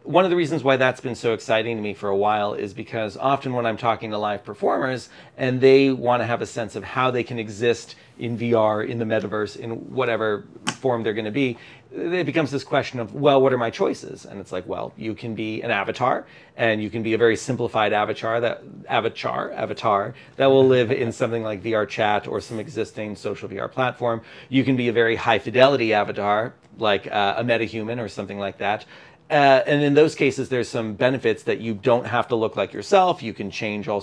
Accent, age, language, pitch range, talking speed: American, 40-59, English, 105-130 Hz, 225 wpm